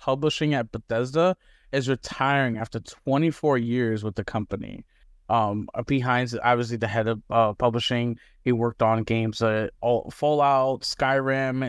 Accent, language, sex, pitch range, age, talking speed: American, English, male, 120-145 Hz, 20-39, 150 wpm